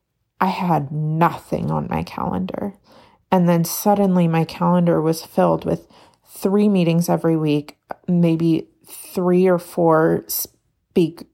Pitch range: 165-185 Hz